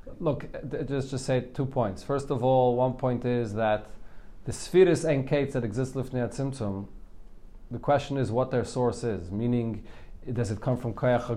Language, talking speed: English, 185 wpm